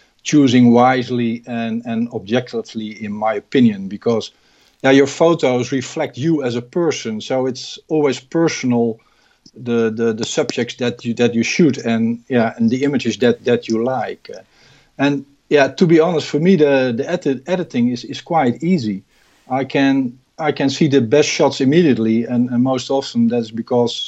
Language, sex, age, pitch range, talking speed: English, male, 50-69, 120-145 Hz, 170 wpm